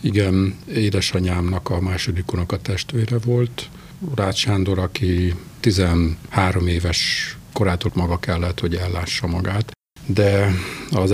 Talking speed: 95 wpm